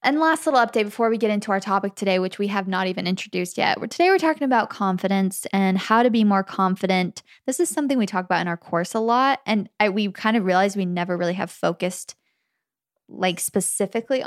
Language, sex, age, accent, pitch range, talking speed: English, female, 10-29, American, 190-235 Hz, 225 wpm